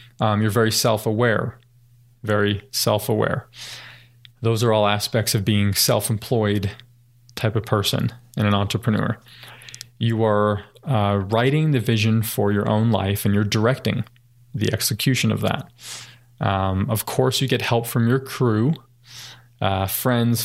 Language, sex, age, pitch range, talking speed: English, male, 20-39, 105-120 Hz, 140 wpm